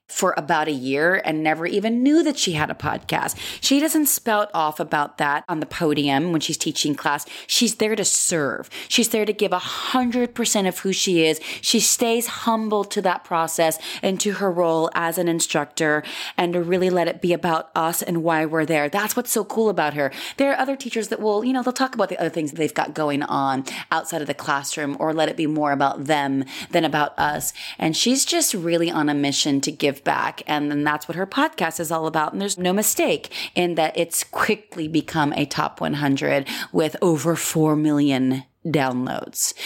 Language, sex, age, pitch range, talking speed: English, female, 30-49, 150-195 Hz, 215 wpm